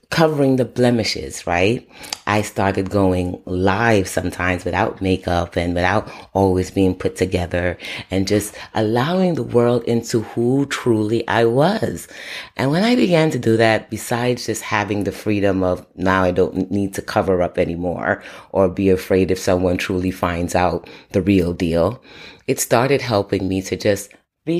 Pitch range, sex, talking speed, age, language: 95-120 Hz, female, 160 wpm, 30-49, English